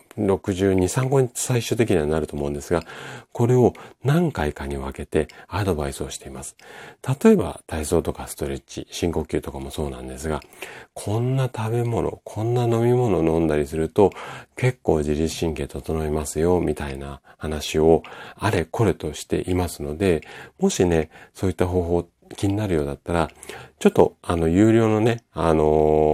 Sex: male